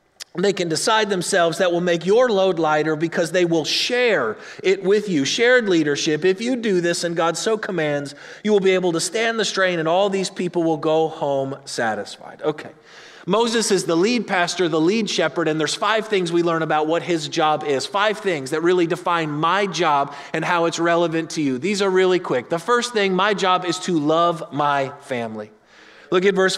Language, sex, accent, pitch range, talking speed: English, male, American, 150-190 Hz, 210 wpm